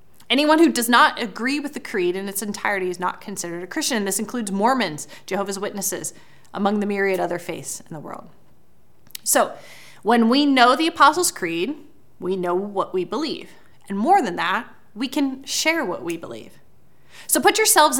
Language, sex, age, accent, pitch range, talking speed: English, female, 20-39, American, 195-270 Hz, 180 wpm